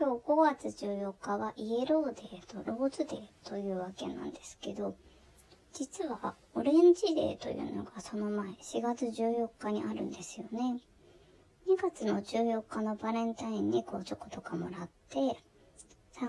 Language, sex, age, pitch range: Japanese, male, 20-39, 205-280 Hz